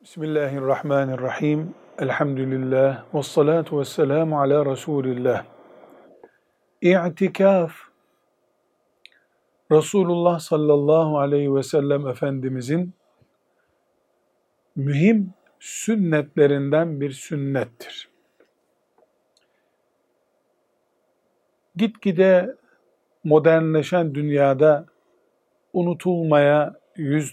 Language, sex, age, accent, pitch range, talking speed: Turkish, male, 50-69, native, 140-175 Hz, 50 wpm